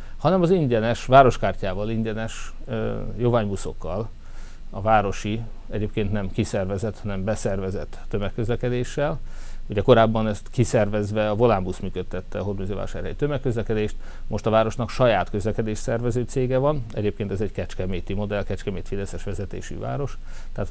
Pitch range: 100-120 Hz